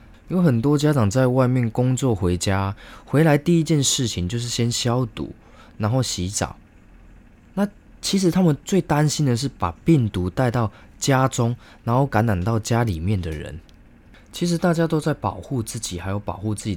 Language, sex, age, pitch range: Chinese, male, 20-39, 95-125 Hz